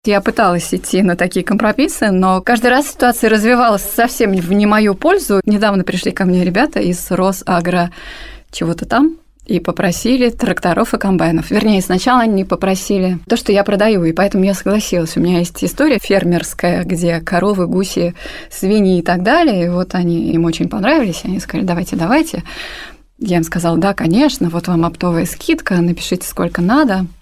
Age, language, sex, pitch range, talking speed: 20-39, Russian, female, 180-225 Hz, 170 wpm